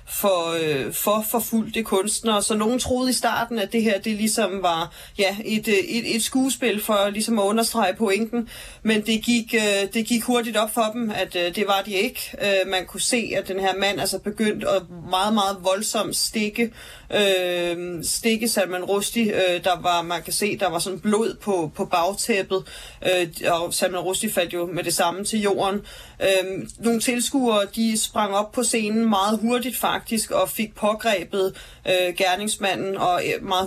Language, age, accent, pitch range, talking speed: Danish, 30-49, native, 180-220 Hz, 170 wpm